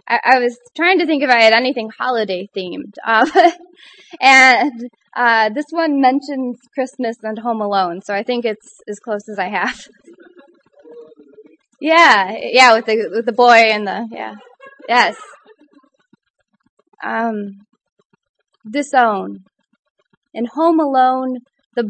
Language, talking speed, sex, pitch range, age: English, 130 wpm, female, 215-275 Hz, 20-39